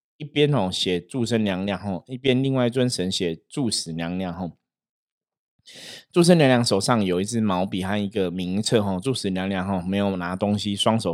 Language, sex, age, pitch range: Chinese, male, 20-39, 95-120 Hz